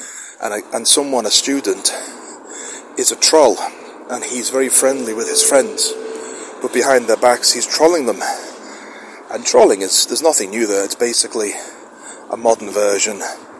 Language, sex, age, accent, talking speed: English, male, 30-49, British, 145 wpm